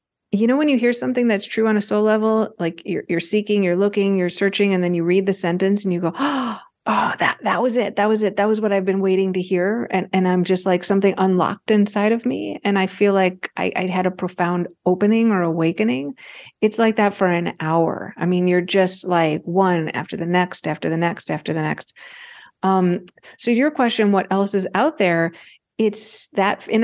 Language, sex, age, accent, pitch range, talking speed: English, female, 40-59, American, 180-220 Hz, 225 wpm